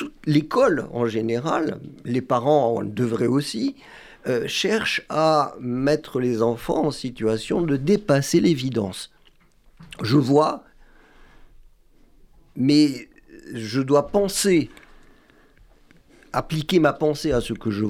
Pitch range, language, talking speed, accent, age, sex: 120-155 Hz, French, 105 wpm, French, 50-69, male